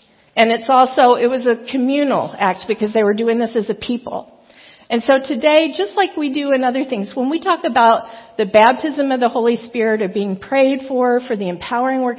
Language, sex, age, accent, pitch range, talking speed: English, female, 50-69, American, 230-275 Hz, 215 wpm